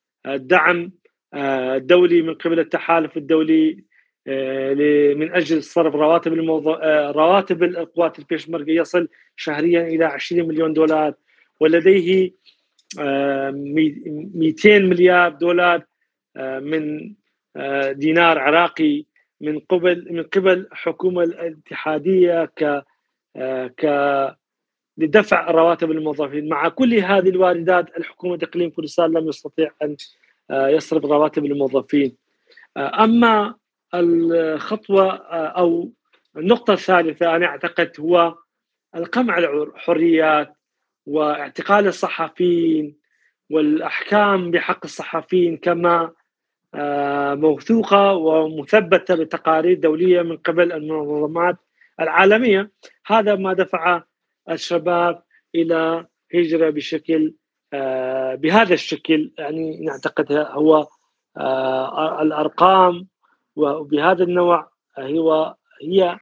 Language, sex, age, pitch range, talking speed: Arabic, male, 40-59, 150-180 Hz, 80 wpm